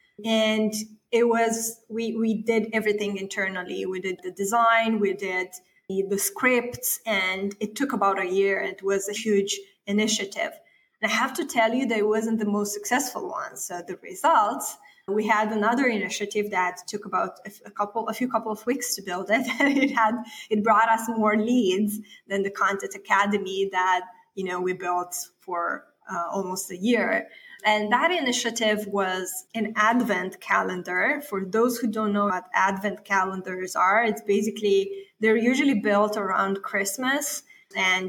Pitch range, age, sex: 195-225 Hz, 20-39, female